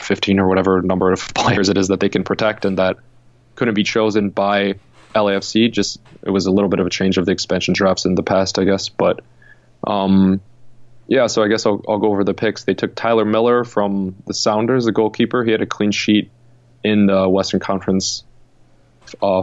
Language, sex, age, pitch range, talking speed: English, male, 20-39, 95-115 Hz, 210 wpm